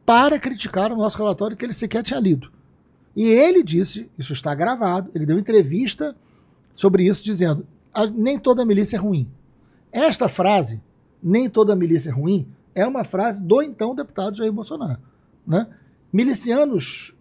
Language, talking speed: Portuguese, 155 wpm